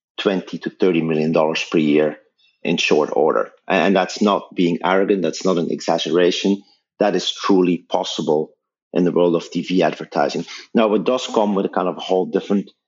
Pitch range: 85-105 Hz